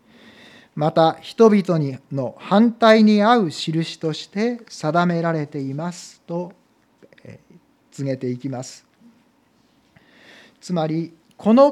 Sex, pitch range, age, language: male, 145-220 Hz, 40-59, Japanese